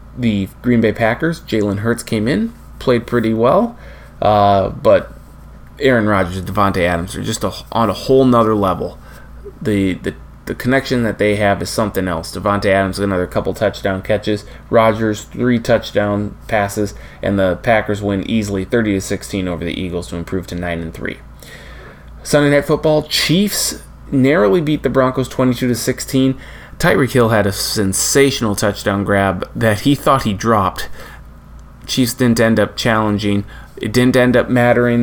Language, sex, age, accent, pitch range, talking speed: English, male, 20-39, American, 100-125 Hz, 165 wpm